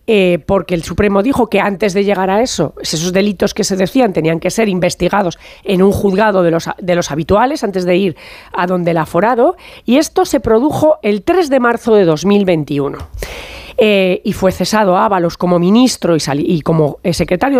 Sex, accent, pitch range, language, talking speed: female, Spanish, 190-250 Hz, Spanish, 195 wpm